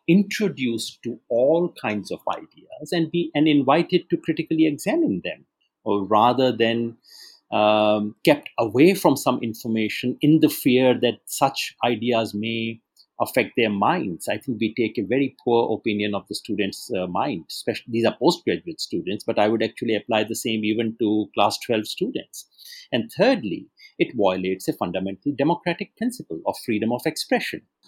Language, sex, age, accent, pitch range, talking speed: English, male, 50-69, Indian, 110-150 Hz, 160 wpm